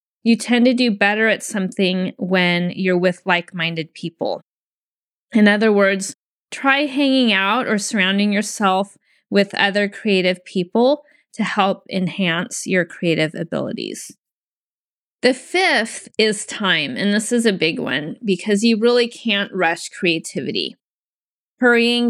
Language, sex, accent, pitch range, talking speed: English, female, American, 185-230 Hz, 130 wpm